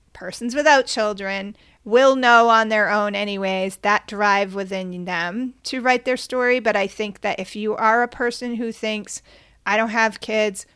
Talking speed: 180 wpm